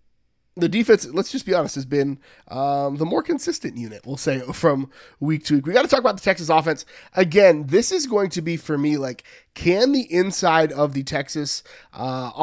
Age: 30-49